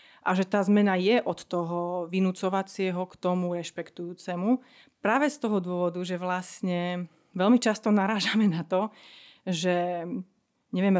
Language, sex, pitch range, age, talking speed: Slovak, female, 180-215 Hz, 30-49, 130 wpm